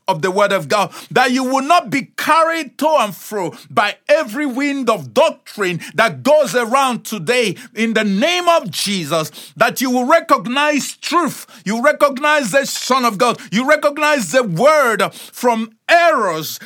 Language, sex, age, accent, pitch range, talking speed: English, male, 50-69, Nigerian, 205-285 Hz, 160 wpm